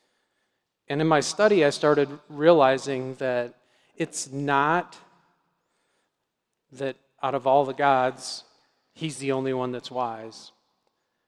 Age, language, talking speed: 40-59, English, 115 wpm